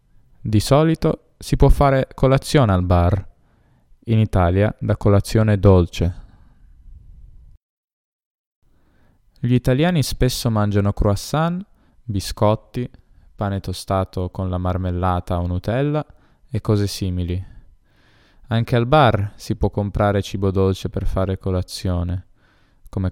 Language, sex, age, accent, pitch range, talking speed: Italian, male, 20-39, native, 95-115 Hz, 105 wpm